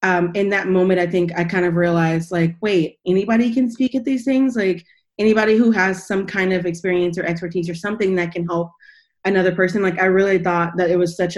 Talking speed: 225 wpm